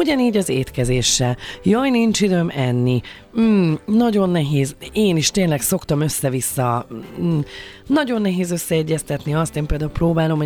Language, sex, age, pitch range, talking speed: Hungarian, female, 30-49, 130-200 Hz, 140 wpm